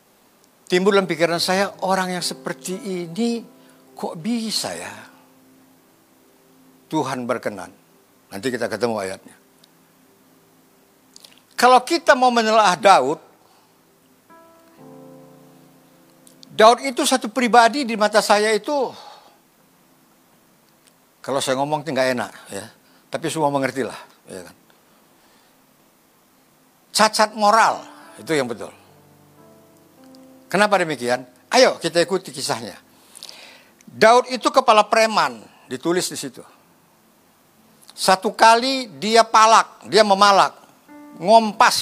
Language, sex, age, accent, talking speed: Indonesian, male, 60-79, native, 95 wpm